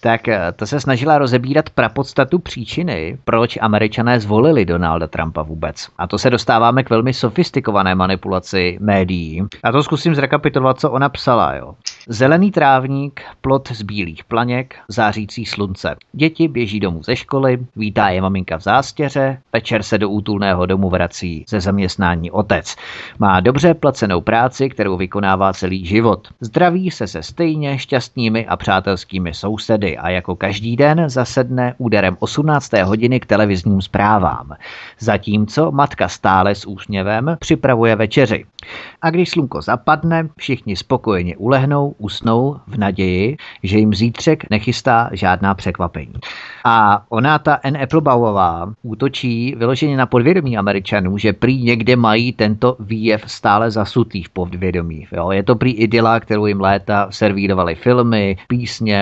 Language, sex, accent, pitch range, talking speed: Czech, male, native, 100-130 Hz, 140 wpm